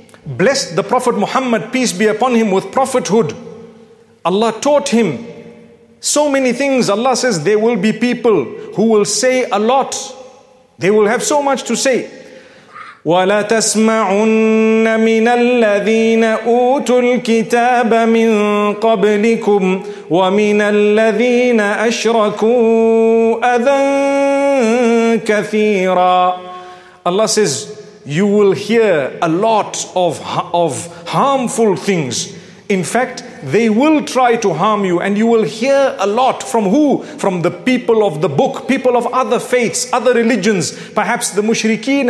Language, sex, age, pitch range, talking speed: English, male, 40-59, 195-245 Hz, 110 wpm